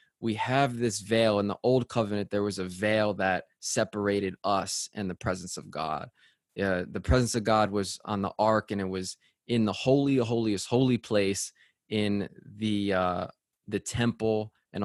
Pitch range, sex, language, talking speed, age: 95-110 Hz, male, English, 180 wpm, 20-39